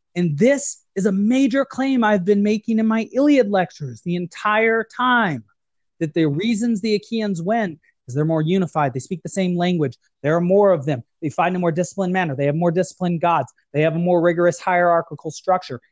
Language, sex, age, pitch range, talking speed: English, male, 30-49, 150-195 Hz, 205 wpm